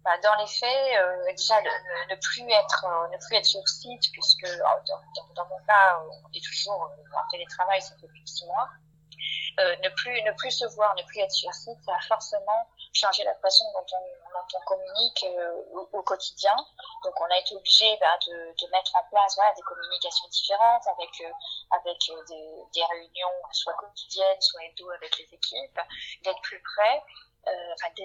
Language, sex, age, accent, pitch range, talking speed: French, female, 20-39, French, 180-265 Hz, 200 wpm